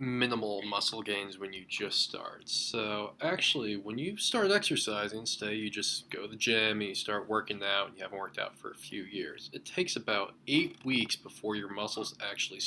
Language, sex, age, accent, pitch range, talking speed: English, male, 20-39, American, 105-140 Hz, 205 wpm